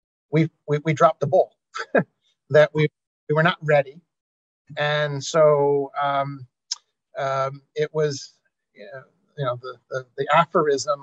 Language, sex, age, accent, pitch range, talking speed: English, male, 50-69, American, 140-160 Hz, 140 wpm